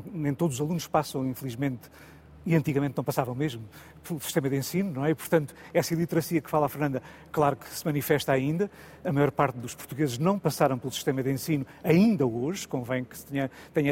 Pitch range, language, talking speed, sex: 145-175 Hz, Portuguese, 200 wpm, male